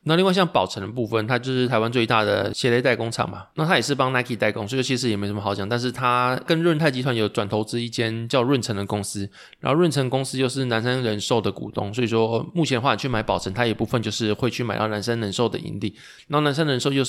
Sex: male